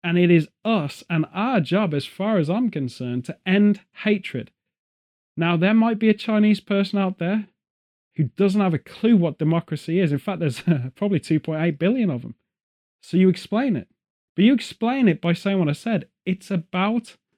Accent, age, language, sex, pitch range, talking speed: British, 30-49, English, male, 150-205 Hz, 195 wpm